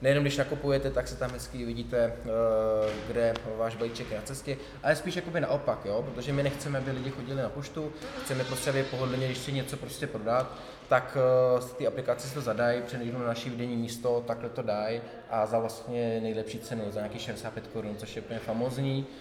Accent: native